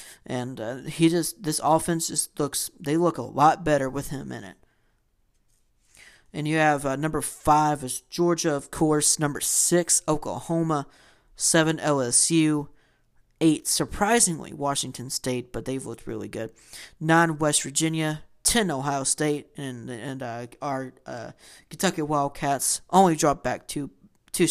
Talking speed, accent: 145 wpm, American